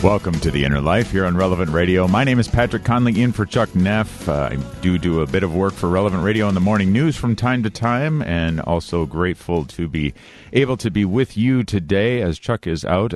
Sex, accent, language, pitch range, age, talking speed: male, American, English, 75-100 Hz, 50-69, 235 wpm